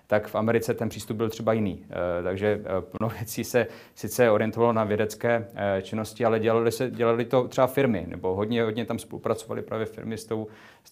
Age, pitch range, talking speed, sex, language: 30-49, 95-110 Hz, 200 wpm, male, Czech